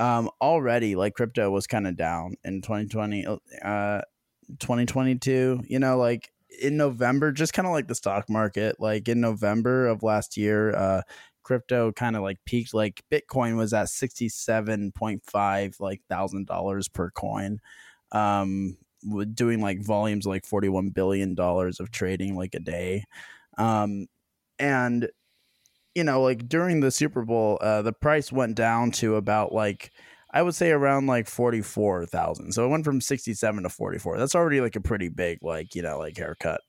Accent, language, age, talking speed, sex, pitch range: American, English, 20-39, 170 wpm, male, 100-125 Hz